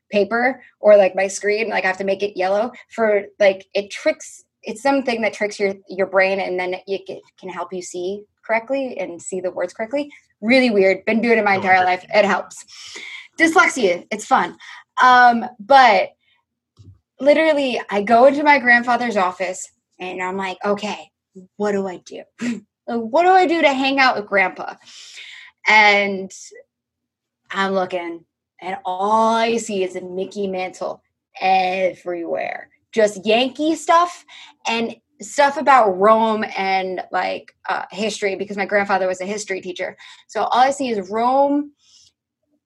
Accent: American